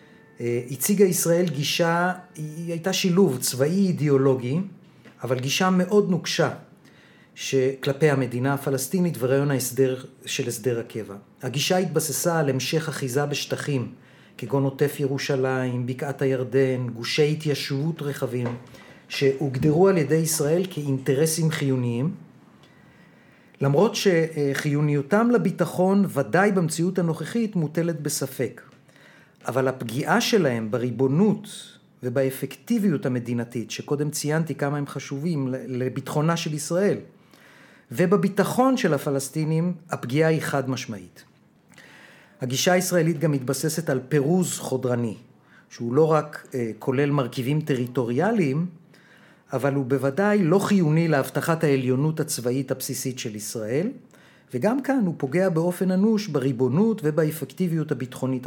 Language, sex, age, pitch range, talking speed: Hebrew, male, 40-59, 130-175 Hz, 105 wpm